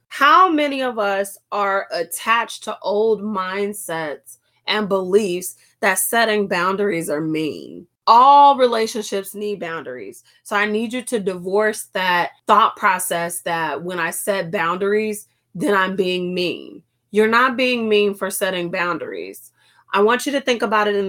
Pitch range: 180-235 Hz